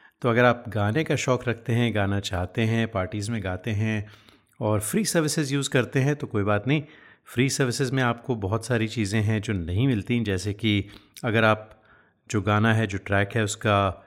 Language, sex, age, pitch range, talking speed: Hindi, male, 30-49, 105-130 Hz, 200 wpm